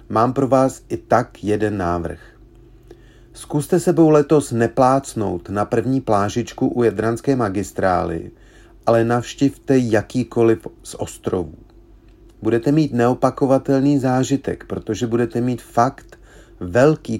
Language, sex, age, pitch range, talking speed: Czech, male, 40-59, 105-130 Hz, 110 wpm